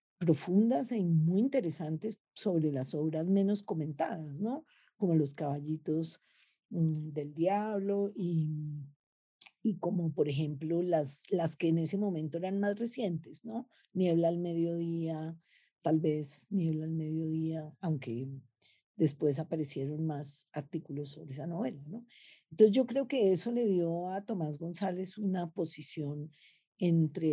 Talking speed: 135 wpm